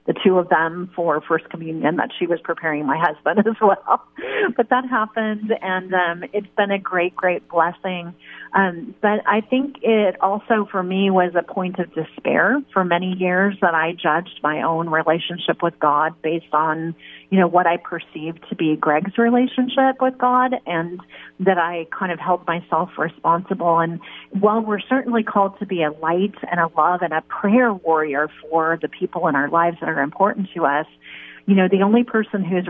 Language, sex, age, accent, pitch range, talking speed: English, female, 40-59, American, 165-200 Hz, 190 wpm